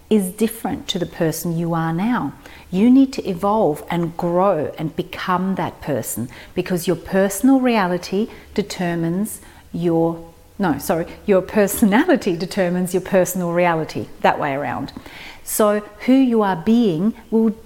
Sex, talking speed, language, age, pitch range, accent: female, 140 wpm, English, 40-59, 170-220 Hz, Australian